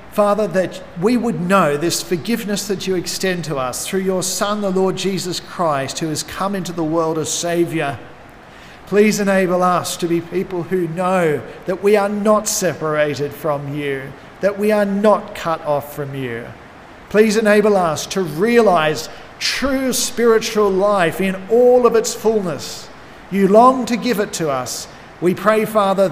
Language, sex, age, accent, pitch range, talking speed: English, male, 40-59, Australian, 160-200 Hz, 170 wpm